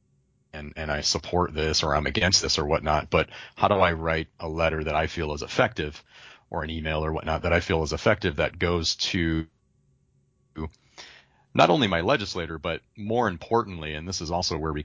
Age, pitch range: 30-49, 80-95 Hz